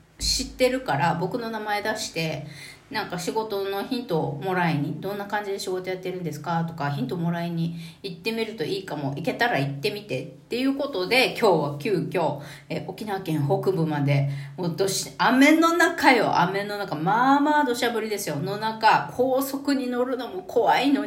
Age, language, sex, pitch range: 40-59, Japanese, female, 155-220 Hz